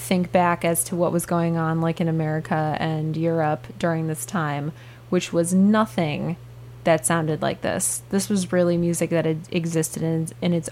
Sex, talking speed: female, 180 wpm